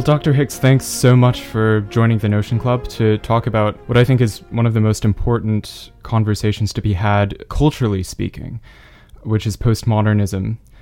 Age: 20-39